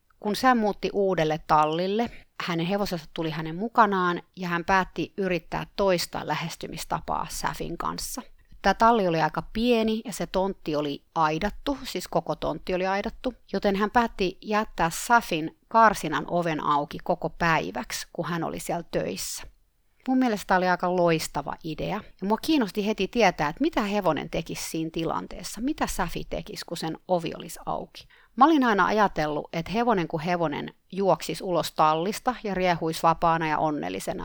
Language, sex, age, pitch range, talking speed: Finnish, female, 30-49, 165-215 Hz, 160 wpm